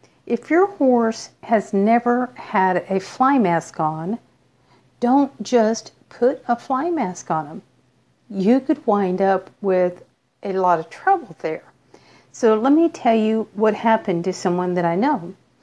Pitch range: 175-230 Hz